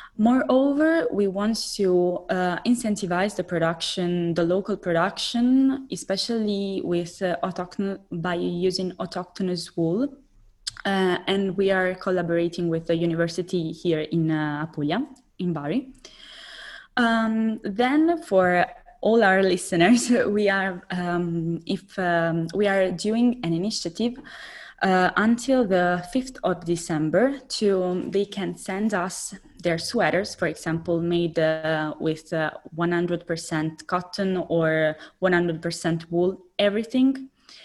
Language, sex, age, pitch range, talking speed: English, female, 20-39, 165-210 Hz, 120 wpm